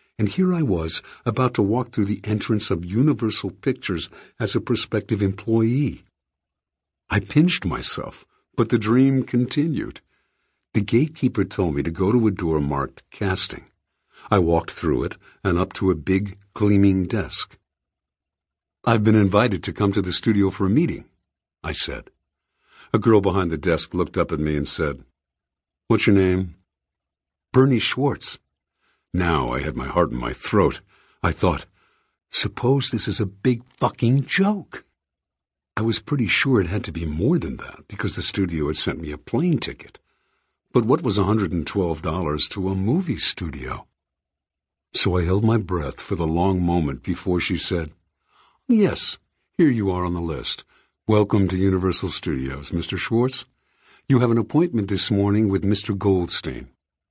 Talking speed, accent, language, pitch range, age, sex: 160 wpm, American, English, 80-110 Hz, 50-69, male